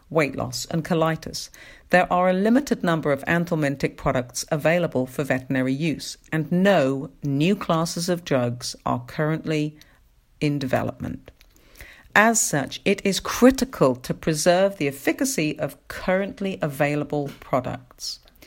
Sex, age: female, 50-69